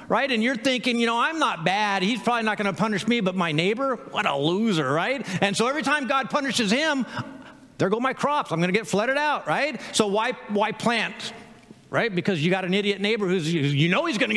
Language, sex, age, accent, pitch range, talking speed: English, male, 50-69, American, 190-250 Hz, 240 wpm